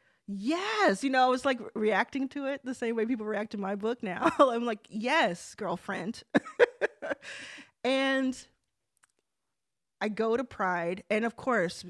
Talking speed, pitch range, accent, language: 150 wpm, 190-245 Hz, American, English